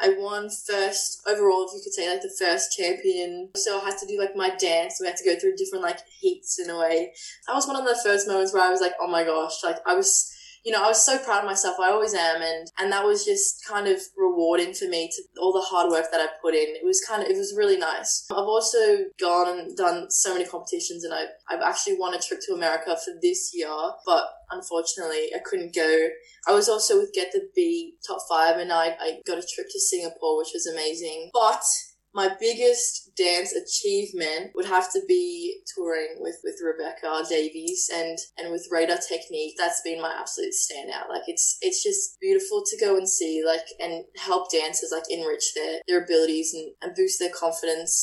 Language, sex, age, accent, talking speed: English, female, 10-29, Australian, 220 wpm